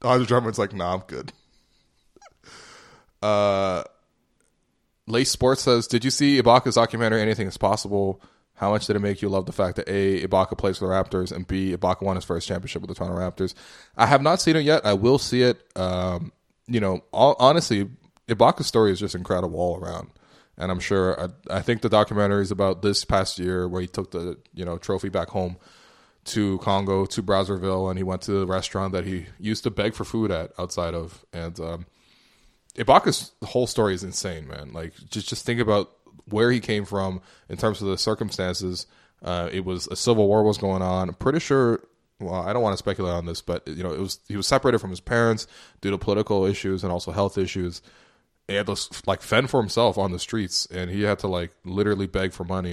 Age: 20-39